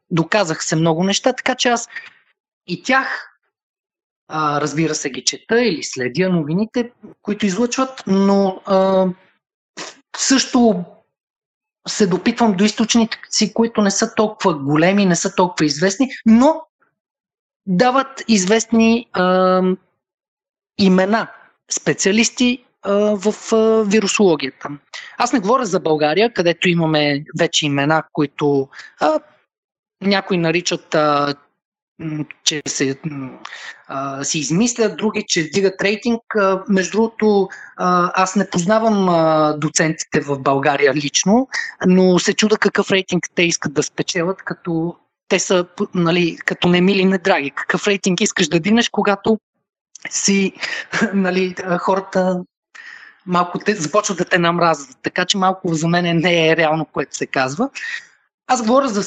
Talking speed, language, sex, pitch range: 125 wpm, Bulgarian, male, 165-220 Hz